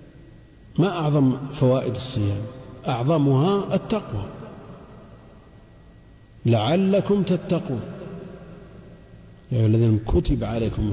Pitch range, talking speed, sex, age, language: 115-150 Hz, 65 wpm, male, 50-69, Arabic